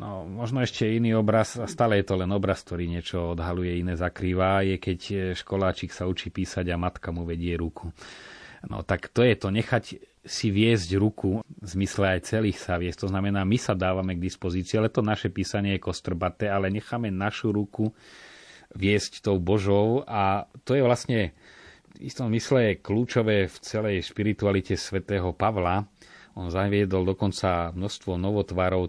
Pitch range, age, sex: 90-110 Hz, 30-49, male